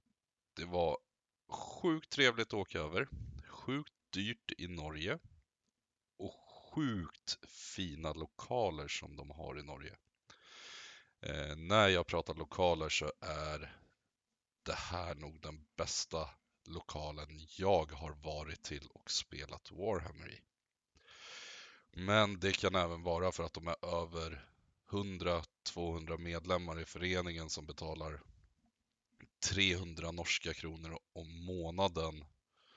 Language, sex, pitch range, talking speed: Swedish, male, 80-95 Hz, 110 wpm